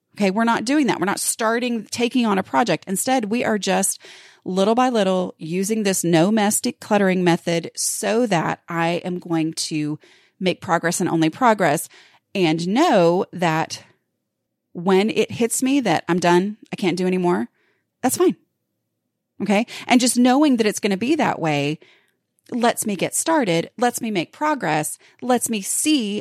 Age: 30-49